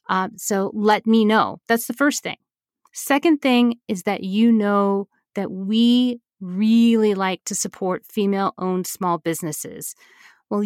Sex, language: female, English